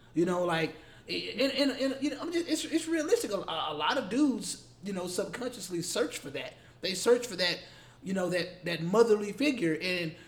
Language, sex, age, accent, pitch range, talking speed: English, male, 20-39, American, 160-230 Hz, 205 wpm